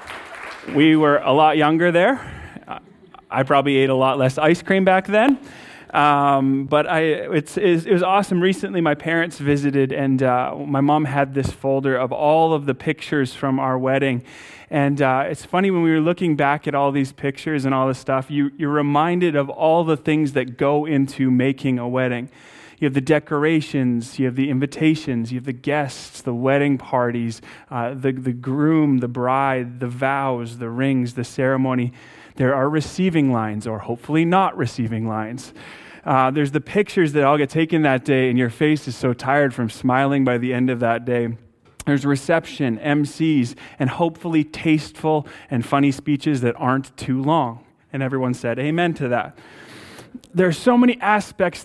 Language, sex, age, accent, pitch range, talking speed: English, male, 30-49, American, 130-155 Hz, 180 wpm